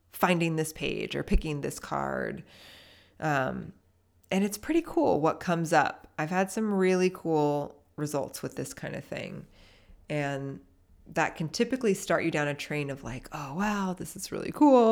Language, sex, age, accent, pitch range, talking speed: English, female, 20-39, American, 140-185 Hz, 175 wpm